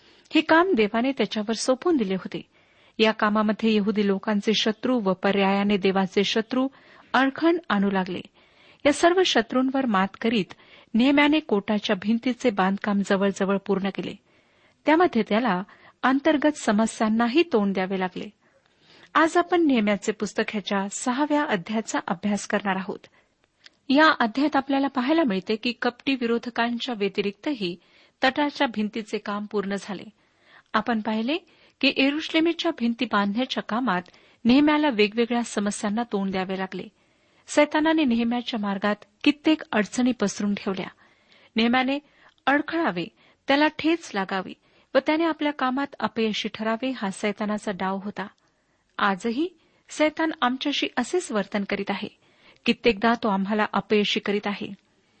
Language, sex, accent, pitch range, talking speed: Marathi, female, native, 205-275 Hz, 115 wpm